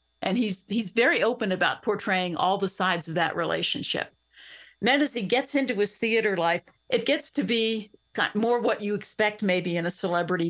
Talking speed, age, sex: 195 wpm, 50-69, female